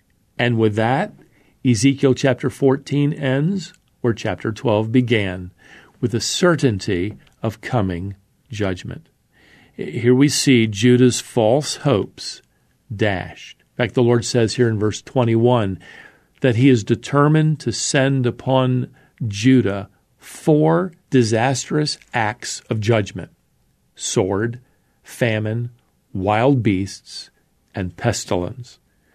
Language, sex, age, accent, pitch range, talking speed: English, male, 50-69, American, 110-140 Hz, 105 wpm